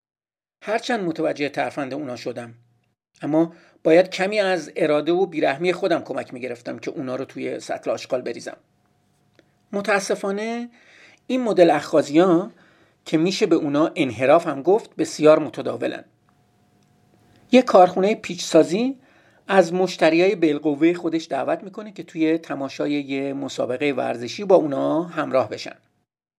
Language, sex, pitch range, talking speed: Persian, male, 155-210 Hz, 130 wpm